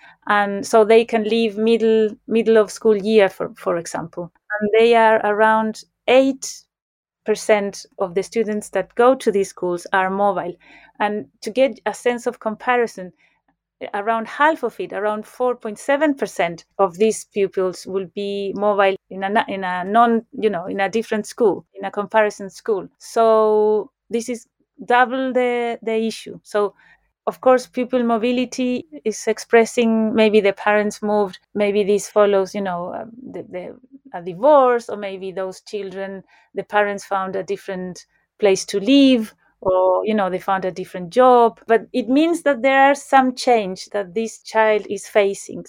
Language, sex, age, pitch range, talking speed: English, female, 30-49, 200-240 Hz, 160 wpm